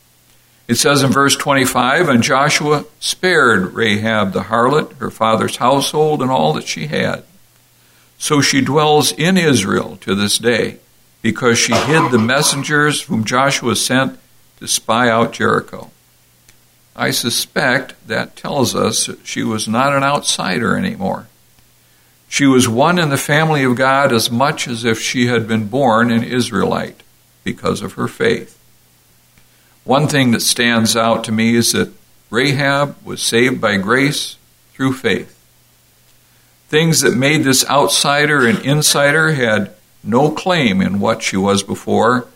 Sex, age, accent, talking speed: male, 60-79, American, 145 wpm